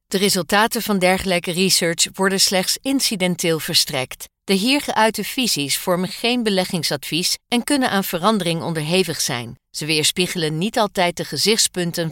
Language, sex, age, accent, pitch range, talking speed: Dutch, female, 50-69, Dutch, 160-210 Hz, 140 wpm